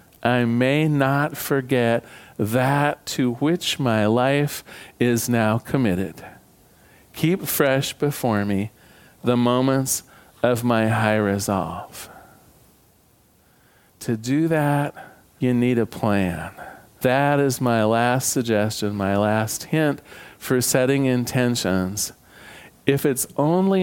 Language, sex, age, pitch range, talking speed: English, male, 40-59, 115-145 Hz, 110 wpm